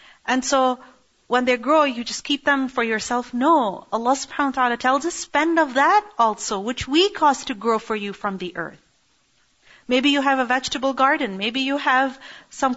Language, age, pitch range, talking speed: English, 40-59, 240-315 Hz, 195 wpm